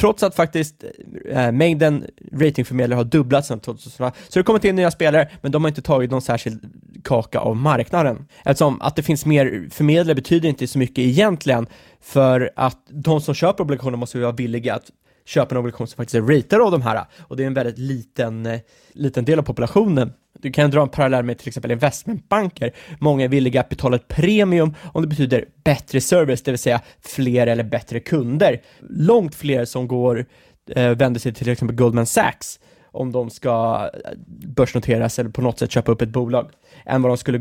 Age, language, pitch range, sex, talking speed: 20-39, Swedish, 120-150 Hz, male, 195 wpm